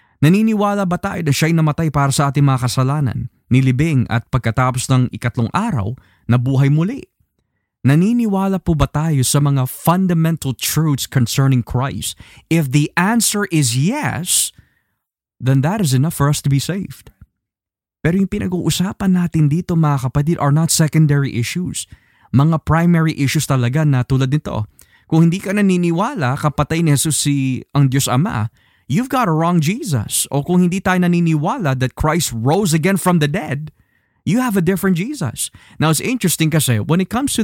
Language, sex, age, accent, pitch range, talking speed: Filipino, male, 20-39, native, 125-170 Hz, 165 wpm